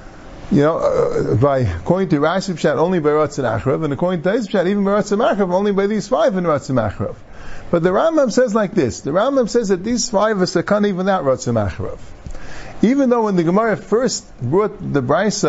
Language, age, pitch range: English, 50-69, 150-220 Hz